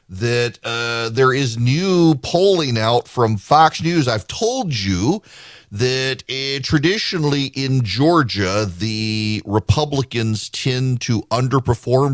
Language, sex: English, male